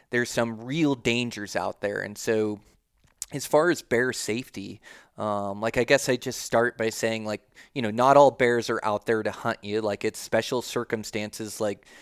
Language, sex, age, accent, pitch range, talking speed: English, male, 30-49, American, 110-125 Hz, 195 wpm